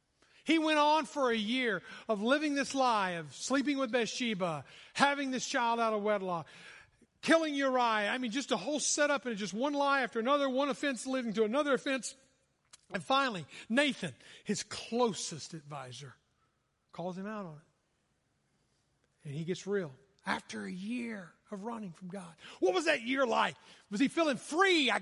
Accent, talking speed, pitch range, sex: American, 175 wpm, 185-275 Hz, male